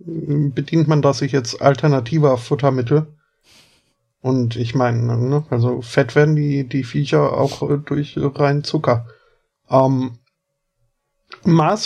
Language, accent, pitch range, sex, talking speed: German, German, 130-150 Hz, male, 115 wpm